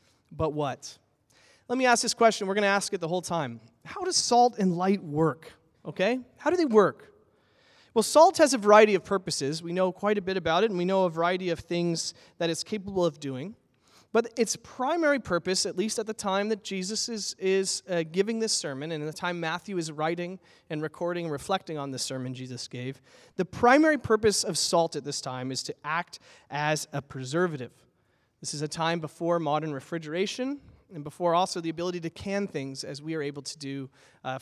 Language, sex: English, male